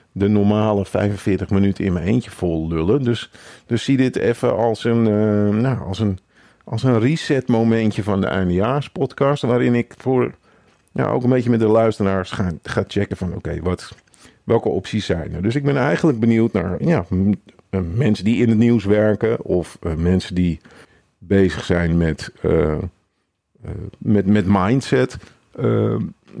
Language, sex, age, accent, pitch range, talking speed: Dutch, male, 50-69, Dutch, 90-115 Hz, 165 wpm